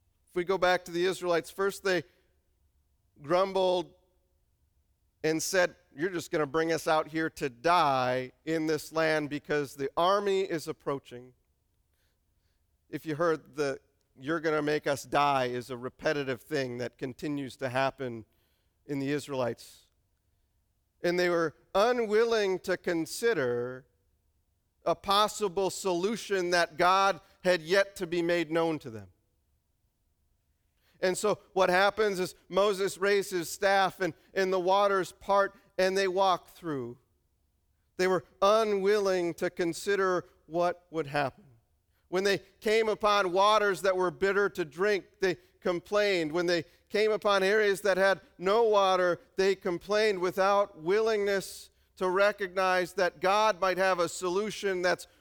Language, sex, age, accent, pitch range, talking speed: English, male, 40-59, American, 125-195 Hz, 140 wpm